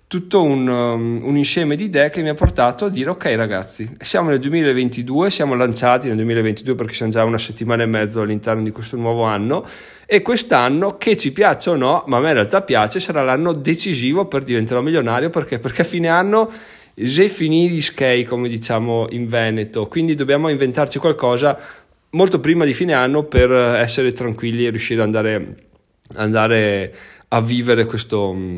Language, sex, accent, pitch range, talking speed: Italian, male, native, 115-145 Hz, 180 wpm